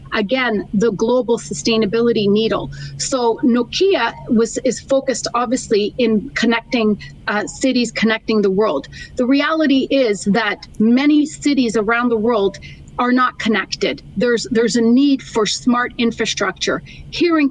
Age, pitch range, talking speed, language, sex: 40-59, 225-275 Hz, 135 wpm, English, female